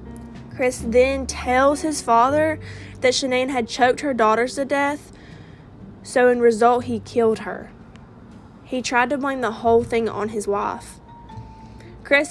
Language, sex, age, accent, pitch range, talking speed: English, female, 20-39, American, 205-240 Hz, 145 wpm